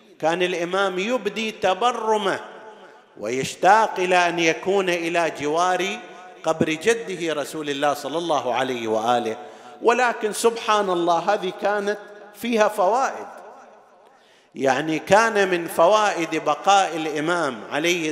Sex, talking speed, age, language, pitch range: male, 105 wpm, 40-59, Arabic, 150-200 Hz